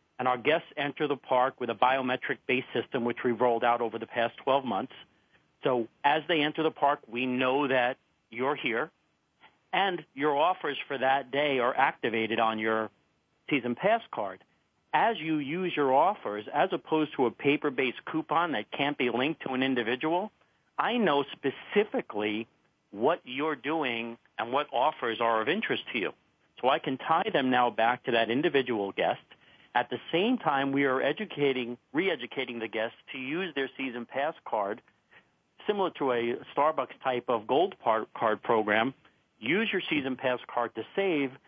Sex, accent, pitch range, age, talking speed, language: male, American, 120-150 Hz, 50-69, 170 wpm, English